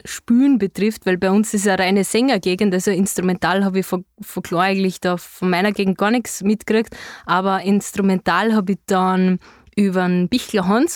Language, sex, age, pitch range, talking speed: German, female, 20-39, 195-235 Hz, 180 wpm